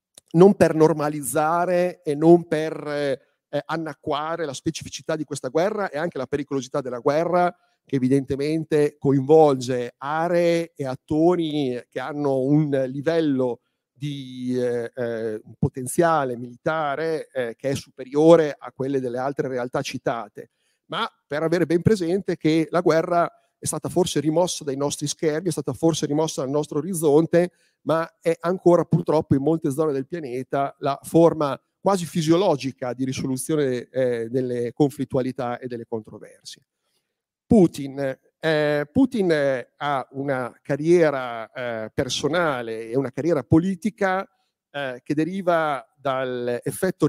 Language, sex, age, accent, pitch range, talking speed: Italian, male, 40-59, native, 135-165 Hz, 130 wpm